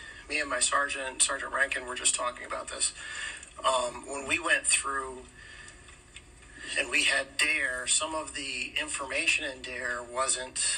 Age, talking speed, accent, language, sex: 40-59, 150 wpm, American, English, male